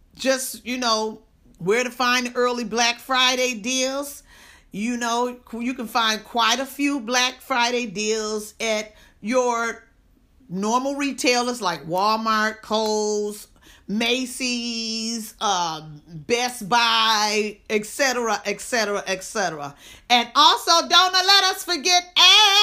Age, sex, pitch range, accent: 40-59, female, 215-290 Hz, American